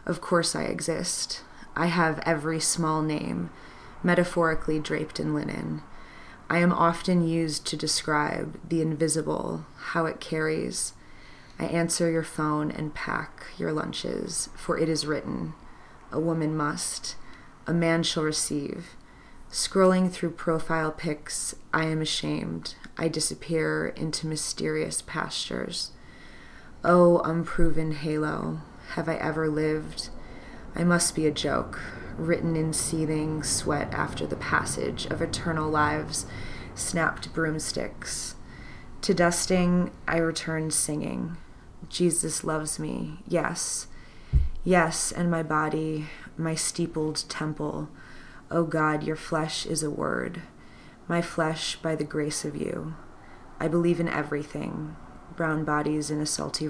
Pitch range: 150-165 Hz